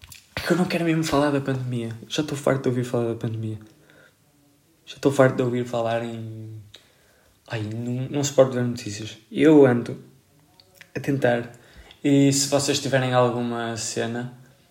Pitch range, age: 115-145 Hz, 20-39